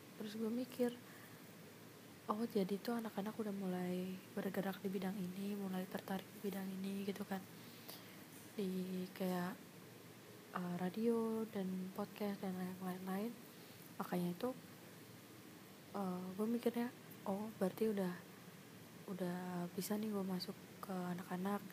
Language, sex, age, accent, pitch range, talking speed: Indonesian, female, 20-39, native, 190-215 Hz, 120 wpm